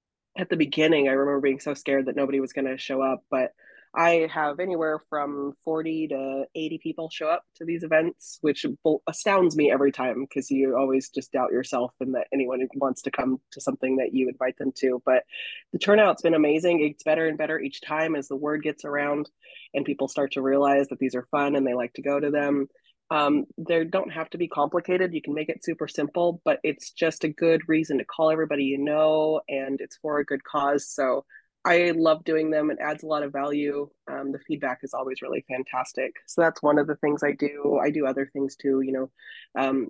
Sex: female